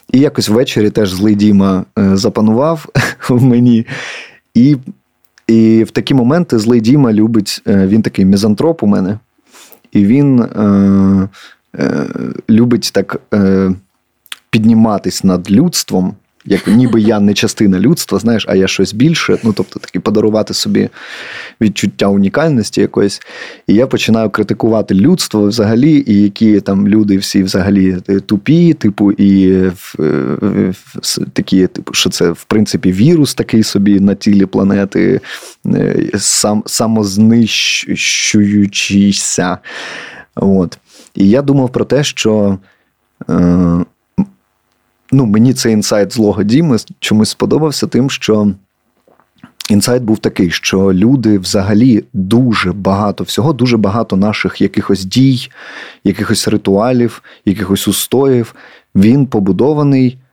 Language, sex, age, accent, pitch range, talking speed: Ukrainian, male, 30-49, native, 100-115 Hz, 125 wpm